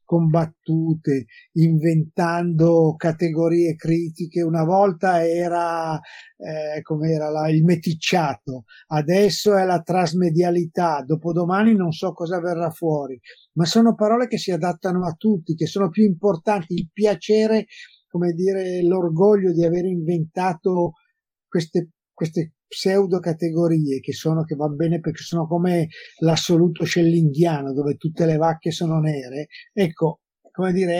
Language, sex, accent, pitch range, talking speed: Italian, male, native, 150-180 Hz, 125 wpm